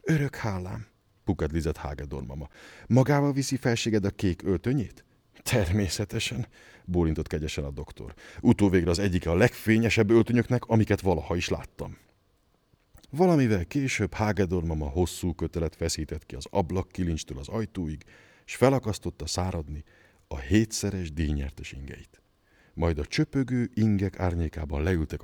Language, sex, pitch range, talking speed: Hungarian, male, 80-110 Hz, 135 wpm